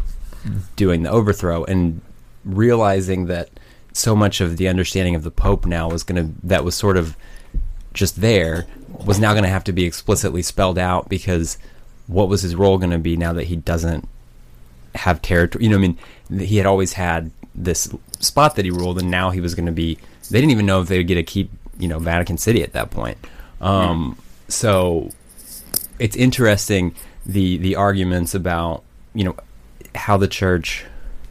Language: English